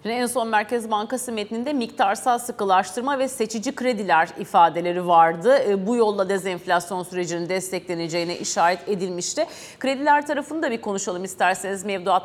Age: 40-59